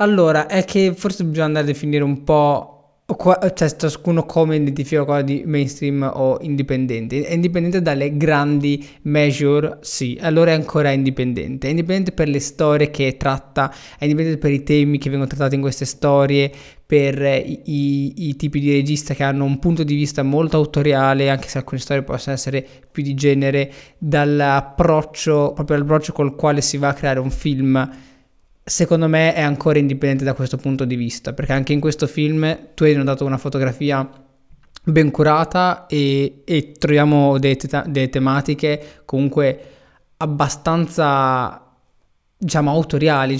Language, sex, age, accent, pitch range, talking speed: Italian, male, 20-39, native, 135-155 Hz, 160 wpm